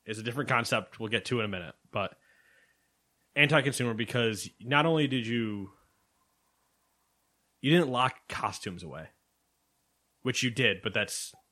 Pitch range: 100-130 Hz